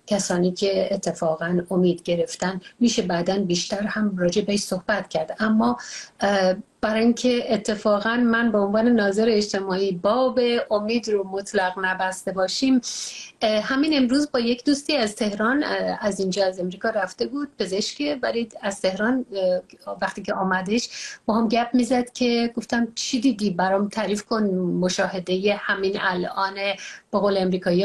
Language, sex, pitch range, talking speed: English, female, 195-250 Hz, 140 wpm